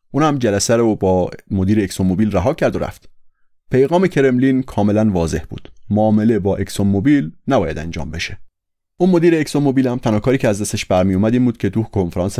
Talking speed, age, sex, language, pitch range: 170 wpm, 30-49, male, Persian, 95-120 Hz